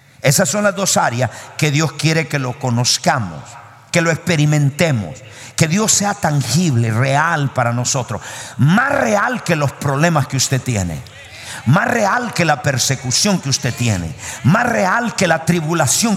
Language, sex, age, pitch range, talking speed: Spanish, male, 50-69, 130-180 Hz, 155 wpm